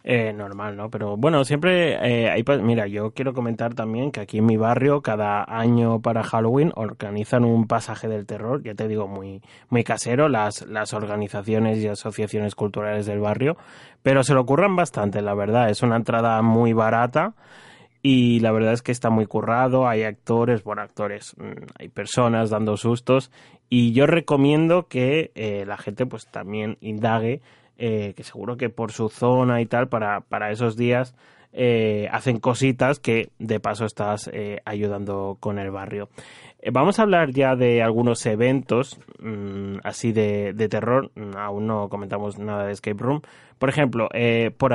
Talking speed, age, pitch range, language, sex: 170 wpm, 20-39, 105-125 Hz, Spanish, male